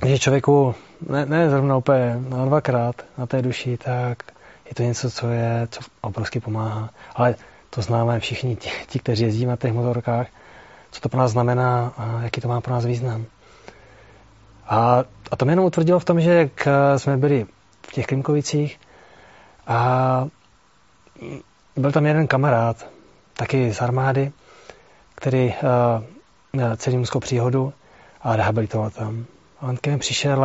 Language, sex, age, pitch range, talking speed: Czech, male, 30-49, 115-140 Hz, 145 wpm